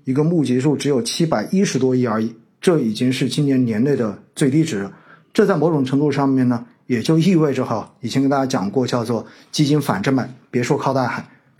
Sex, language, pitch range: male, Chinese, 135-205 Hz